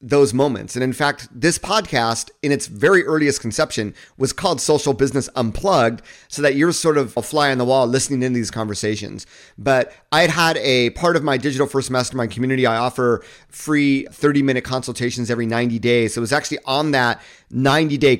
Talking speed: 190 wpm